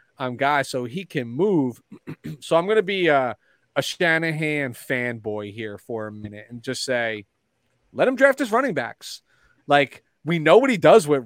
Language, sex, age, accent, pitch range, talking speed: English, male, 30-49, American, 125-170 Hz, 185 wpm